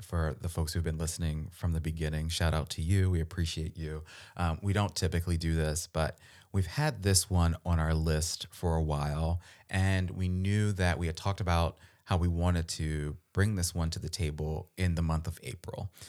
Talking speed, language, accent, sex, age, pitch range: 210 wpm, English, American, male, 30-49, 80-95 Hz